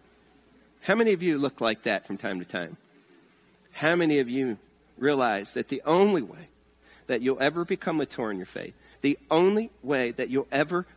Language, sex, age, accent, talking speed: English, male, 40-59, American, 190 wpm